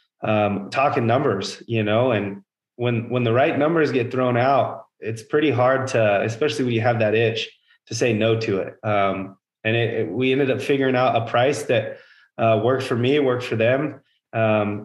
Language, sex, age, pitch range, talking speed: English, male, 20-39, 110-130 Hz, 200 wpm